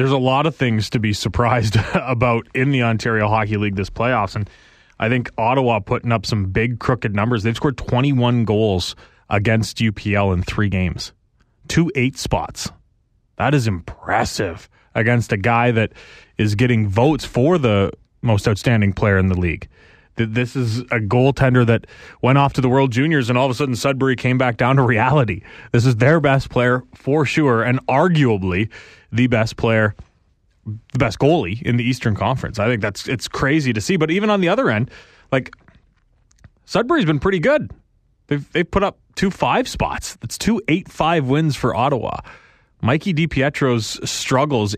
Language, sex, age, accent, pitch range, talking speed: English, male, 20-39, American, 110-135 Hz, 175 wpm